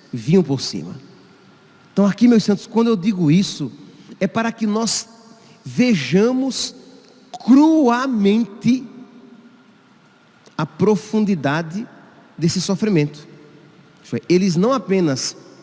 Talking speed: 90 wpm